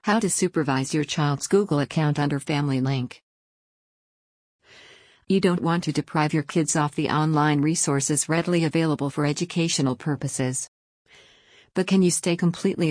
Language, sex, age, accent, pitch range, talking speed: English, female, 50-69, American, 145-170 Hz, 145 wpm